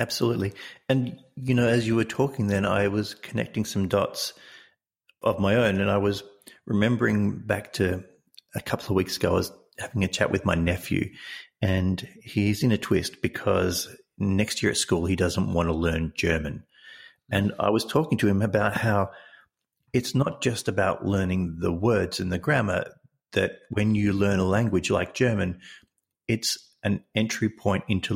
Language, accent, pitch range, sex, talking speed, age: English, Australian, 95-110 Hz, male, 175 wpm, 40-59